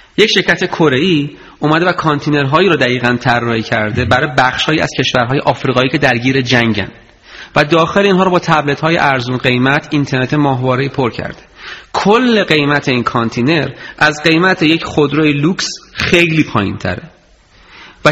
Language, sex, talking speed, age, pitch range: Persian, male, 150 wpm, 30-49, 130-180 Hz